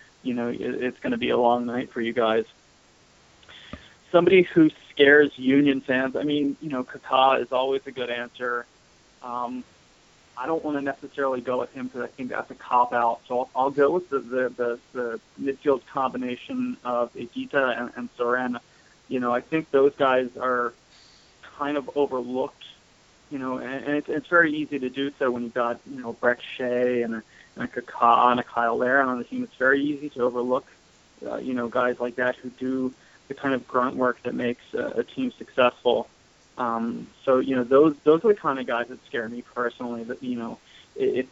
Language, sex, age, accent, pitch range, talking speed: English, male, 30-49, American, 120-140 Hz, 200 wpm